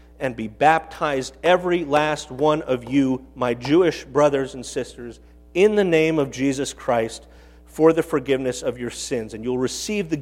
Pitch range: 110-160 Hz